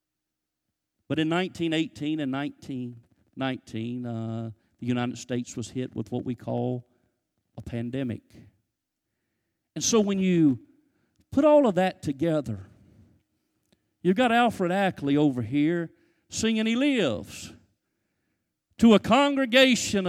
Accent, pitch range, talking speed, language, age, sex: American, 140-225 Hz, 115 wpm, English, 50-69, male